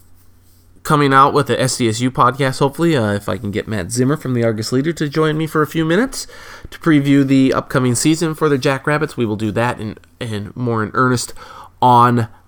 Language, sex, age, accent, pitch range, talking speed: English, male, 20-39, American, 105-155 Hz, 205 wpm